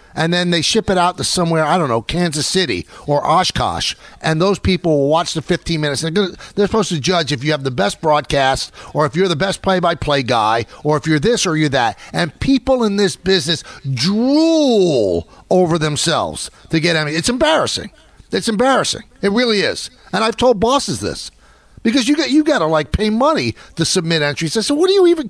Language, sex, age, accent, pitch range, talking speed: English, male, 50-69, American, 155-245 Hz, 215 wpm